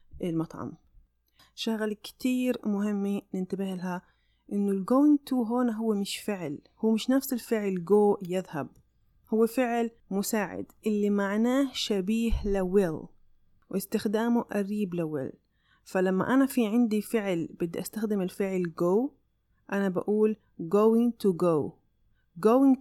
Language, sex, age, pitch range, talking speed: Arabic, female, 30-49, 180-230 Hz, 120 wpm